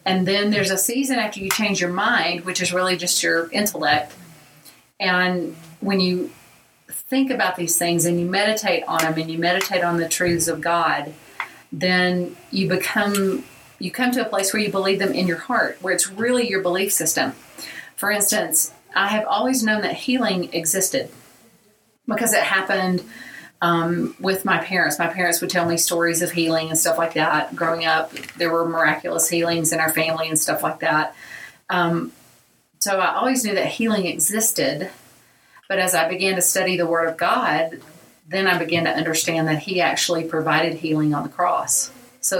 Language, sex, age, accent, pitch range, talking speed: English, female, 40-59, American, 165-195 Hz, 185 wpm